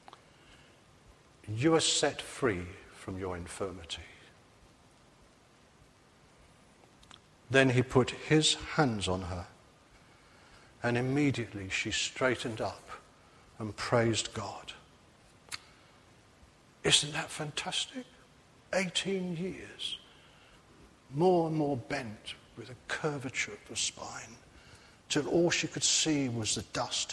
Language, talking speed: English, 100 wpm